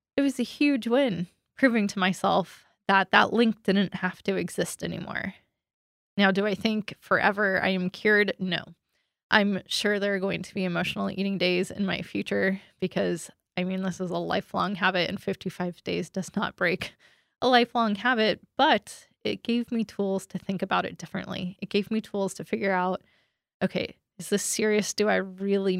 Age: 20-39